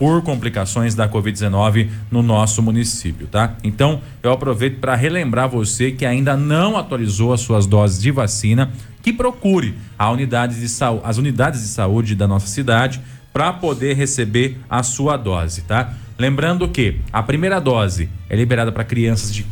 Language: Portuguese